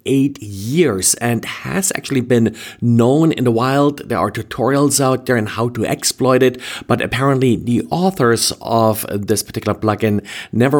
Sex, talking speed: male, 160 wpm